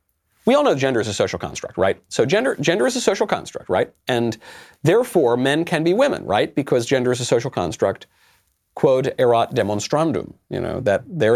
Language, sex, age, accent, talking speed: English, male, 40-59, American, 195 wpm